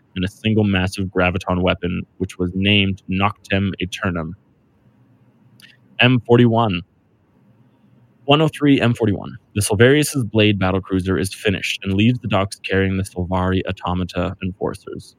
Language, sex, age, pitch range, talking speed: English, male, 20-39, 90-115 Hz, 115 wpm